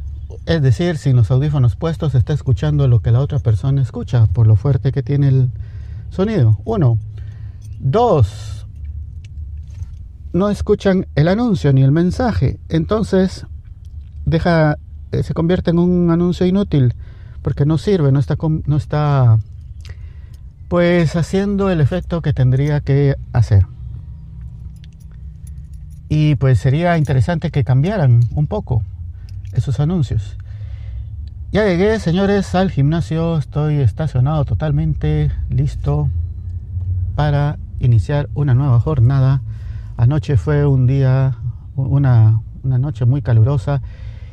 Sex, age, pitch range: male, 50-69, 105-150 Hz